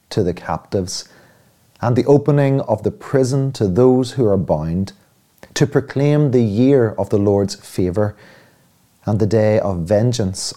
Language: English